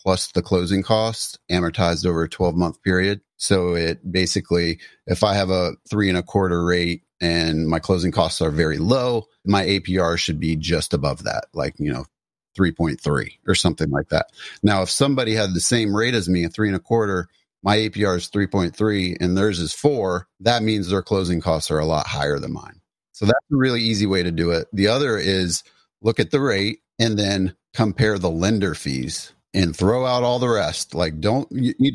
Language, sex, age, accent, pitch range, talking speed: English, male, 30-49, American, 85-110 Hz, 205 wpm